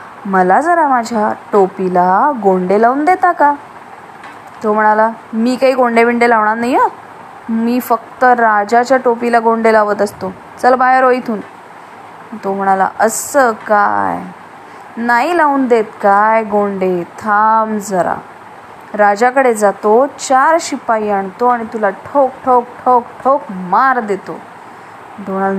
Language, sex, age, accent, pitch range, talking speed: English, female, 20-39, Indian, 205-255 Hz, 120 wpm